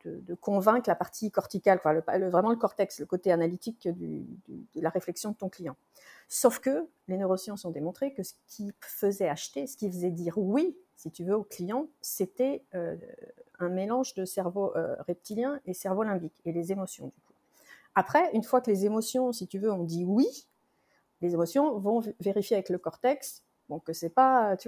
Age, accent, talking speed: 50-69, French, 205 wpm